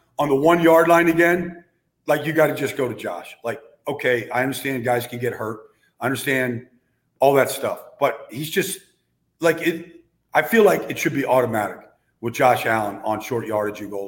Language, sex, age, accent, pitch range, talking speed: English, male, 50-69, American, 125-160 Hz, 195 wpm